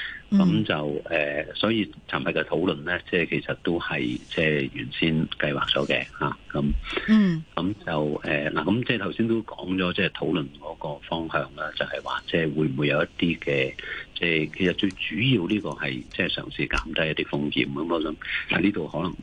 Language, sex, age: Chinese, male, 50-69